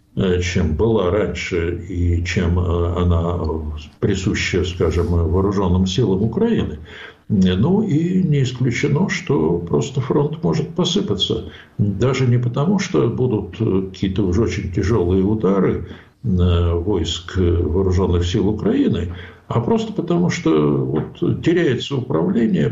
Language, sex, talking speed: Ukrainian, male, 105 wpm